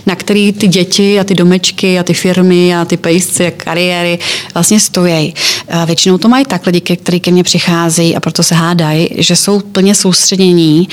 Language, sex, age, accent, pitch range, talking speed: Czech, female, 30-49, native, 175-195 Hz, 185 wpm